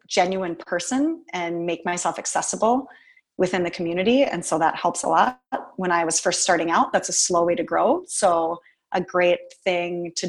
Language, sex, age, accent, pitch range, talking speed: English, female, 30-49, American, 175-215 Hz, 185 wpm